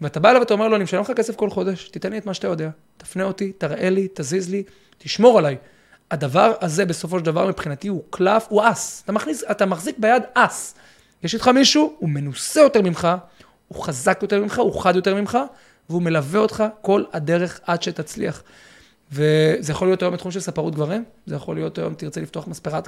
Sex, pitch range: male, 170-220 Hz